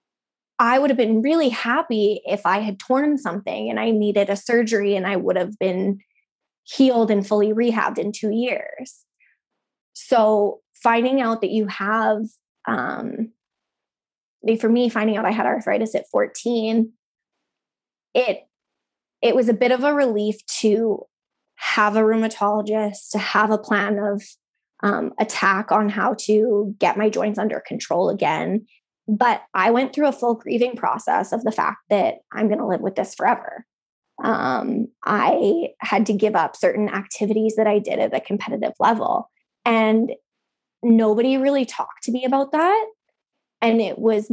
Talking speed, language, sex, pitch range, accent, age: 160 wpm, English, female, 210-240 Hz, American, 20-39